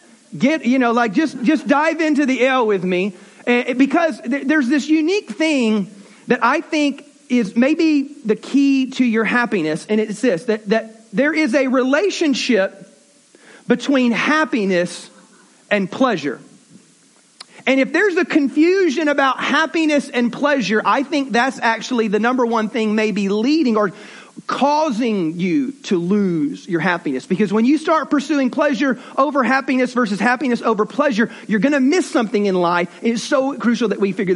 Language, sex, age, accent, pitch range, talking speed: English, male, 40-59, American, 215-285 Hz, 160 wpm